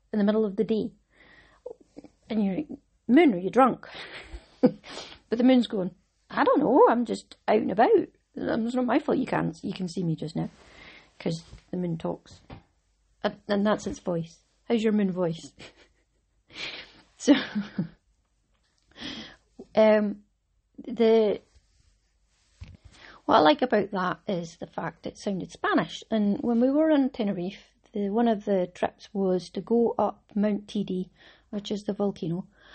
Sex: female